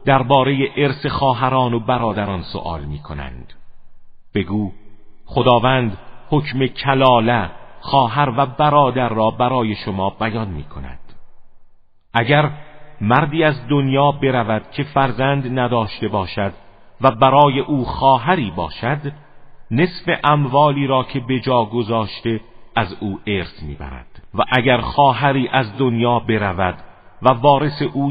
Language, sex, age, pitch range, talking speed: Persian, male, 50-69, 105-135 Hz, 115 wpm